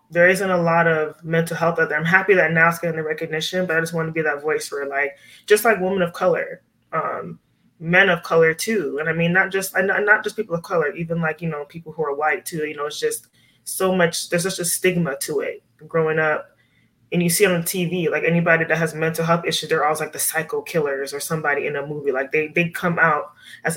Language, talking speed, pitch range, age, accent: English, 250 wpm, 155-185 Hz, 20-39, American